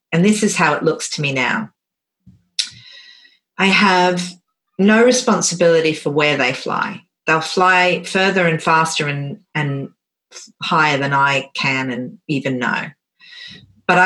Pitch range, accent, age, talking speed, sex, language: 155-200 Hz, Australian, 40-59, 135 wpm, female, English